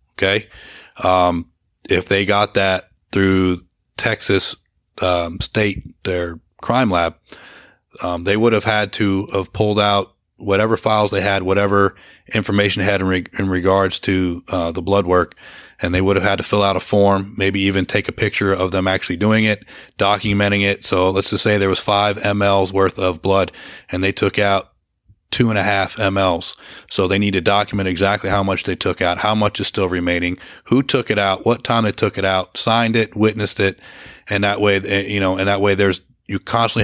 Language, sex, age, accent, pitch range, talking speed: English, male, 30-49, American, 95-105 Hz, 200 wpm